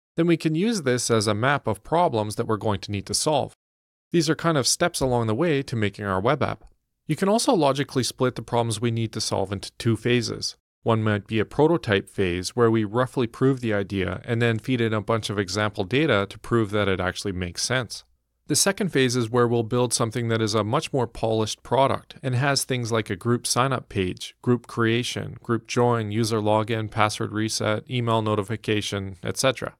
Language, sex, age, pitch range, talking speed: English, male, 40-59, 105-140 Hz, 215 wpm